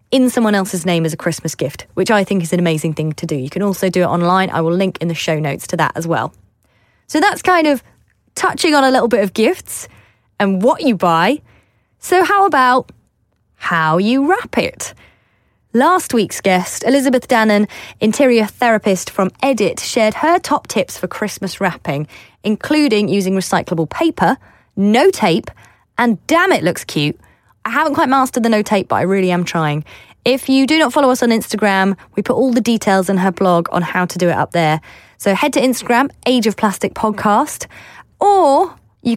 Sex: female